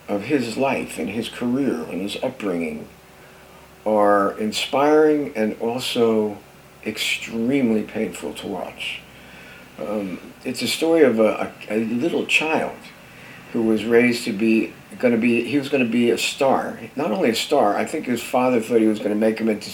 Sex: male